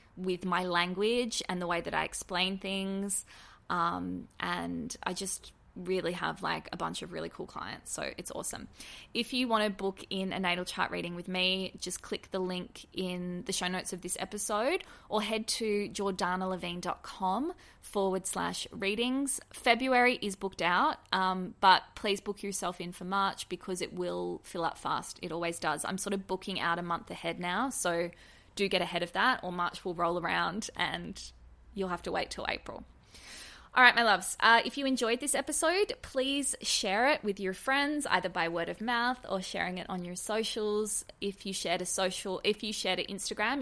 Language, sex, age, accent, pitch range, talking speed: English, female, 20-39, Australian, 180-215 Hz, 195 wpm